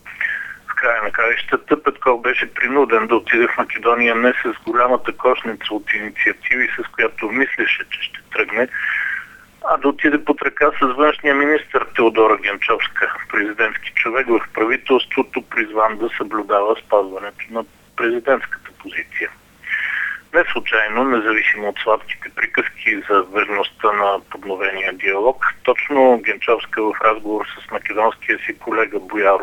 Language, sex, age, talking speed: Bulgarian, male, 50-69, 125 wpm